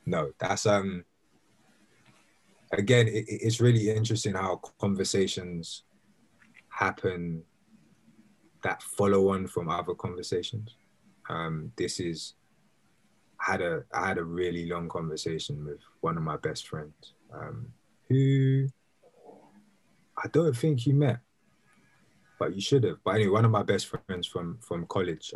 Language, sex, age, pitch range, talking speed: English, male, 20-39, 85-110 Hz, 130 wpm